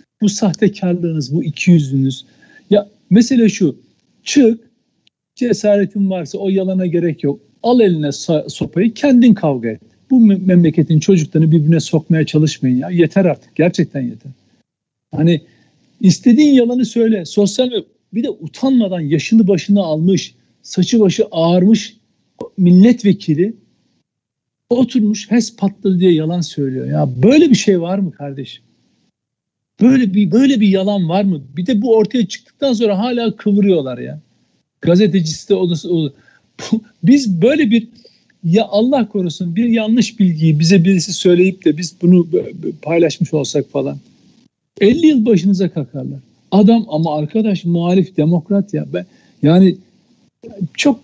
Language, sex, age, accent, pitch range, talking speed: Turkish, male, 60-79, native, 160-220 Hz, 130 wpm